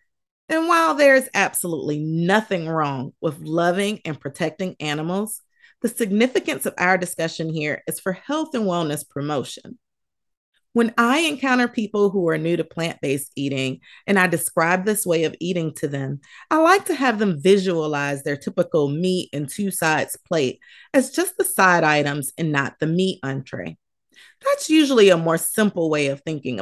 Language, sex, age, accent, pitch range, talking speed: English, female, 30-49, American, 155-240 Hz, 165 wpm